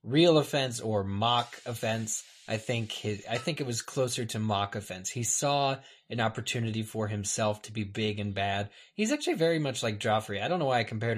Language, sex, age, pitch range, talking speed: English, male, 20-39, 100-125 Hz, 210 wpm